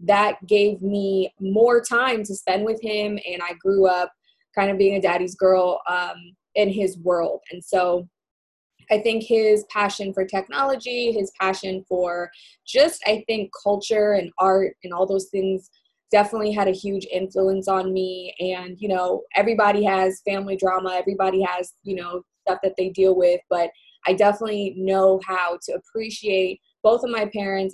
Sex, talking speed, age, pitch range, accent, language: female, 170 wpm, 20-39, 185-210 Hz, American, English